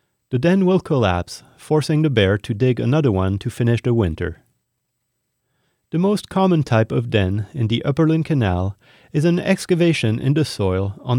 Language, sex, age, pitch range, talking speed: English, male, 30-49, 105-140 Hz, 170 wpm